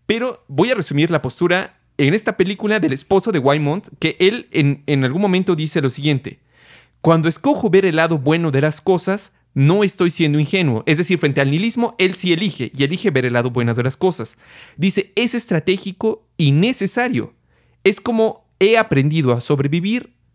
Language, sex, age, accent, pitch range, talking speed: Spanish, male, 30-49, Mexican, 140-190 Hz, 185 wpm